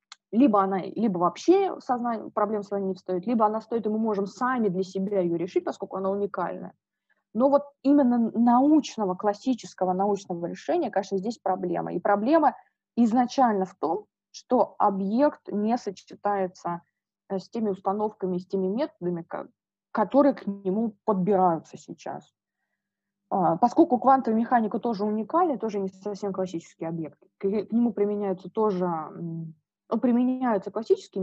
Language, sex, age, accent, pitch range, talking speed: Russian, female, 20-39, native, 185-225 Hz, 135 wpm